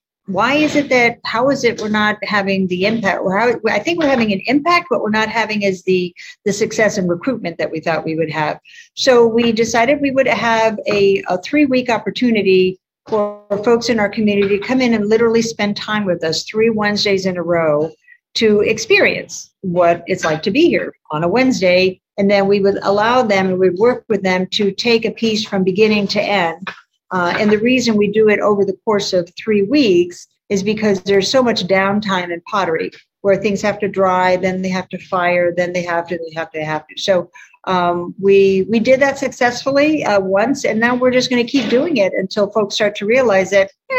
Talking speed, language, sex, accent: 220 wpm, English, female, American